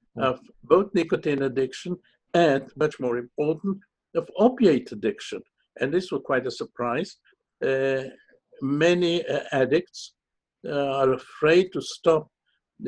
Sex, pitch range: male, 130-175 Hz